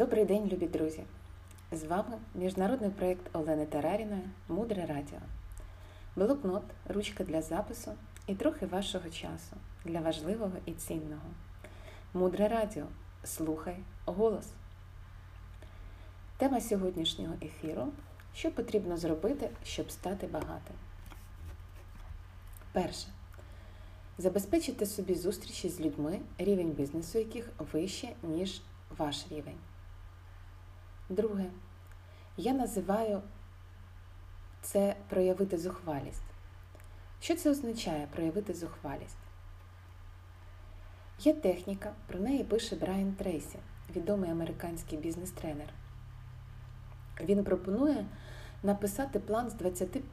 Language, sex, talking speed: Ukrainian, female, 95 wpm